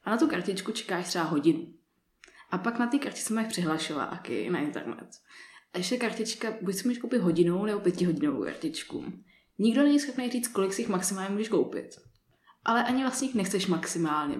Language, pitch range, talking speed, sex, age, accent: Czech, 185-235 Hz, 180 wpm, female, 20-39, native